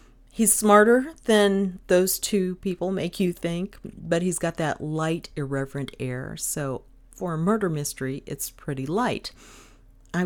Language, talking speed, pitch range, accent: English, 145 wpm, 145-195 Hz, American